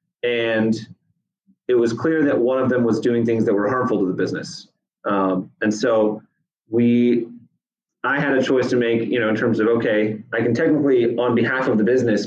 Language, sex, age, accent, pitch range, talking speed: English, male, 30-49, American, 105-125 Hz, 200 wpm